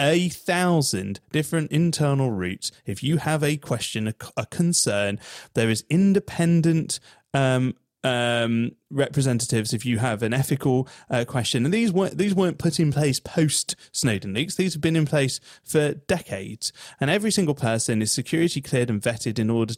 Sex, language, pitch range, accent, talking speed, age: male, English, 120-165 Hz, British, 165 wpm, 30-49